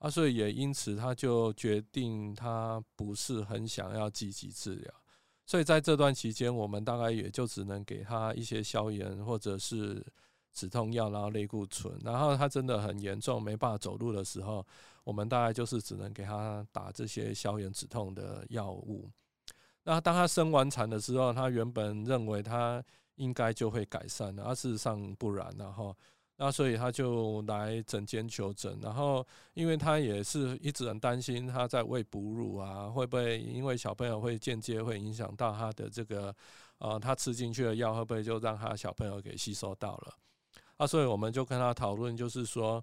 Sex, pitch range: male, 105-125 Hz